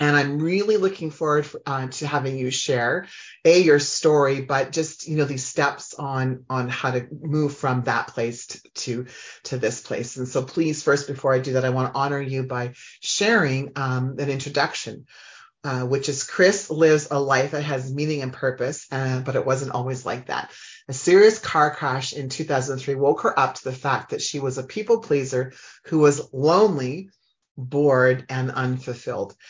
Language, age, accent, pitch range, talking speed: English, 30-49, American, 130-155 Hz, 190 wpm